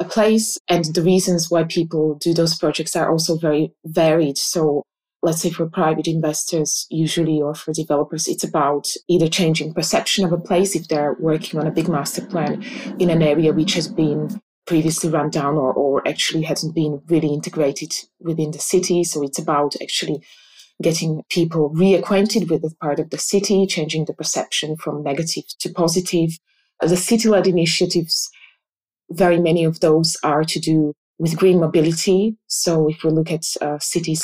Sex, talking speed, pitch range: female, 175 wpm, 155-175 Hz